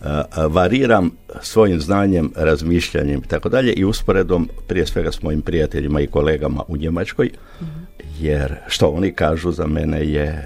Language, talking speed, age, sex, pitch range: Croatian, 130 wpm, 60-79, male, 75-100 Hz